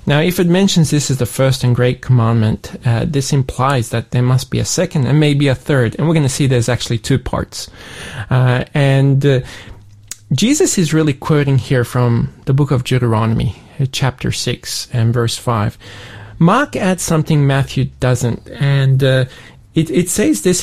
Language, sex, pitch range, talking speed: English, male, 120-150 Hz, 185 wpm